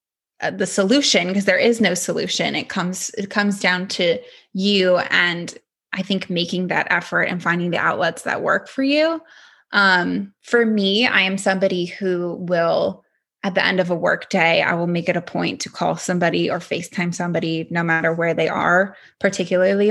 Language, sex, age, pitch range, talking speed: English, female, 20-39, 180-230 Hz, 185 wpm